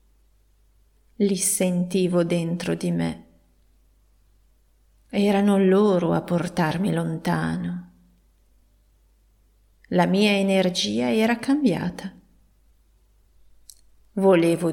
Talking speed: 65 wpm